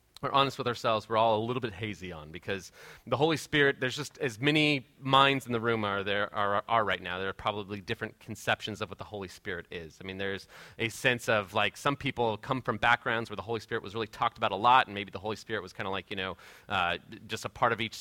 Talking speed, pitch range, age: 260 wpm, 105-130 Hz, 30-49